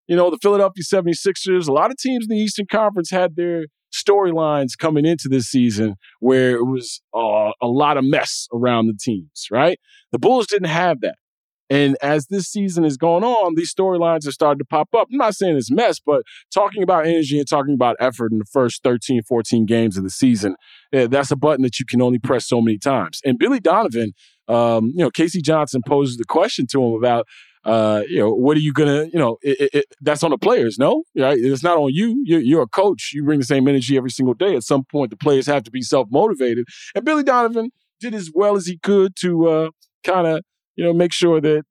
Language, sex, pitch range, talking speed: English, male, 130-185 Hz, 225 wpm